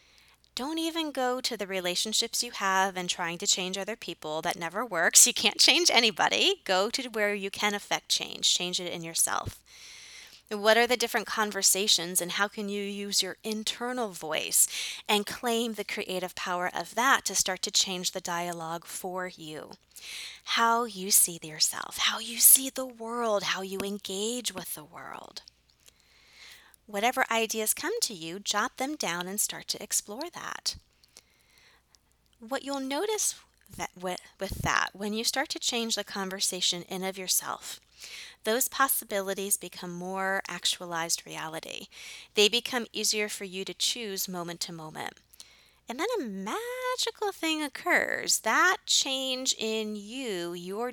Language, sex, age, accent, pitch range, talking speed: English, female, 20-39, American, 185-240 Hz, 155 wpm